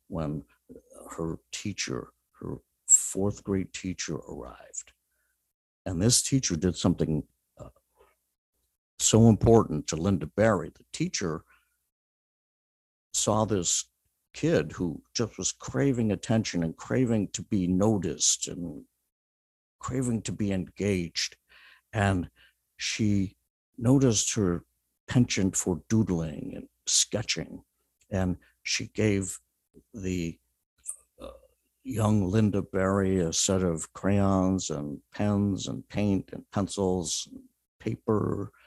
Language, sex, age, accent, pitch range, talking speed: English, male, 60-79, American, 85-115 Hz, 105 wpm